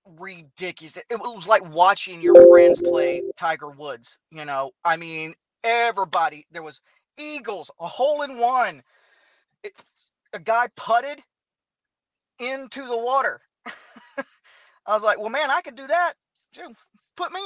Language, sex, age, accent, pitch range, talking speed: English, male, 30-49, American, 170-235 Hz, 140 wpm